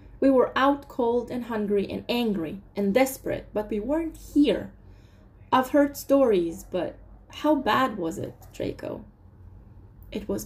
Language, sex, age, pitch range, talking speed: English, female, 20-39, 170-265 Hz, 145 wpm